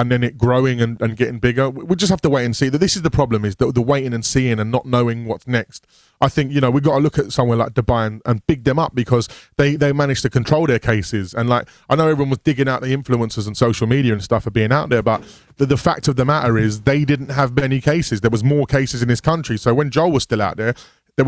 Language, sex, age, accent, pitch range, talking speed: English, male, 20-39, British, 115-140 Hz, 290 wpm